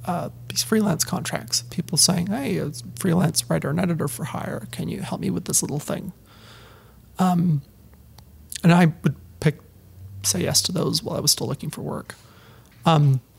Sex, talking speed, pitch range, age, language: male, 175 wpm, 120-160 Hz, 30-49, English